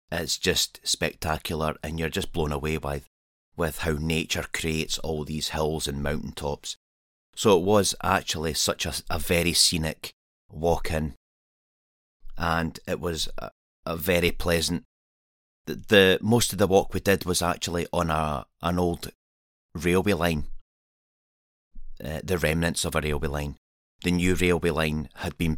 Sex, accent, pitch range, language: male, British, 75-85 Hz, English